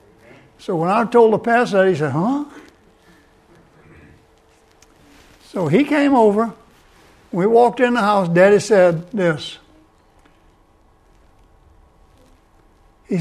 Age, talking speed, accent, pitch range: 60-79, 105 wpm, American, 130-195 Hz